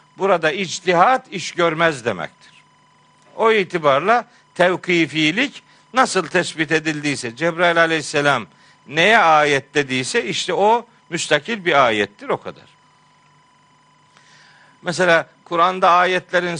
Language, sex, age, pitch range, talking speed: Turkish, male, 50-69, 145-200 Hz, 95 wpm